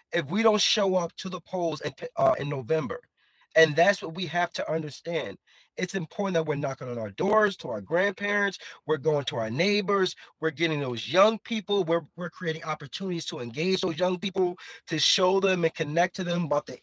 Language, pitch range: English, 160-190 Hz